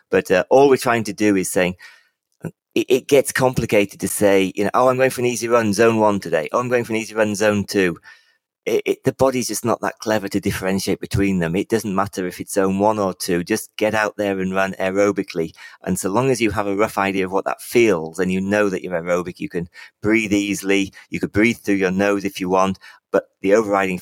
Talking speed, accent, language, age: 240 wpm, British, English, 30-49